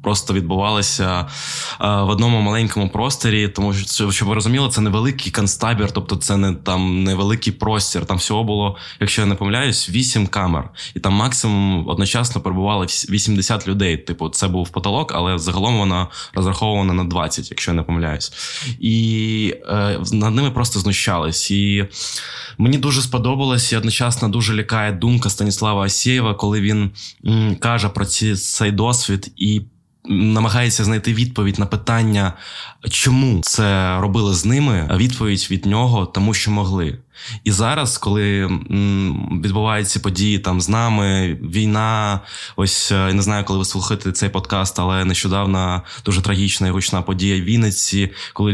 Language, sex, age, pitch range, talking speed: Ukrainian, male, 20-39, 95-110 Hz, 145 wpm